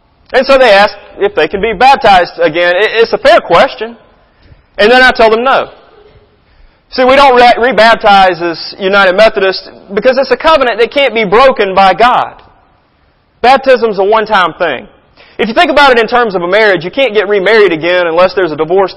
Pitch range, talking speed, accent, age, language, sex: 165-225 Hz, 190 wpm, American, 30-49, English, male